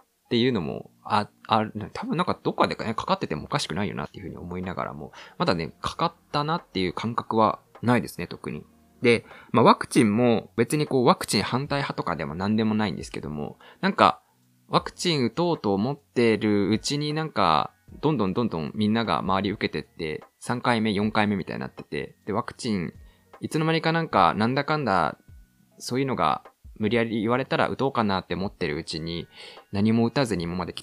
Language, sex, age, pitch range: Japanese, male, 20-39, 105-165 Hz